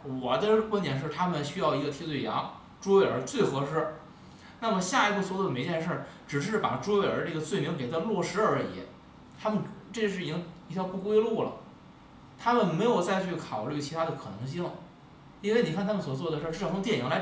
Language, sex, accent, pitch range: Chinese, male, native, 155-210 Hz